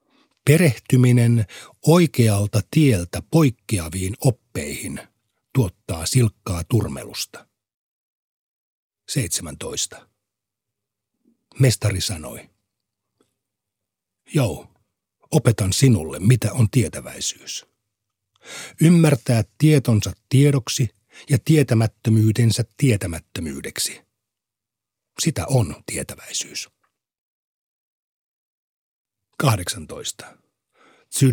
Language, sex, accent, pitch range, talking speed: Finnish, male, native, 105-135 Hz, 55 wpm